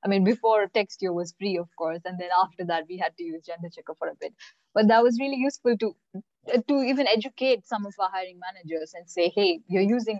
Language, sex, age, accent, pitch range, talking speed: English, female, 20-39, Indian, 180-245 Hz, 240 wpm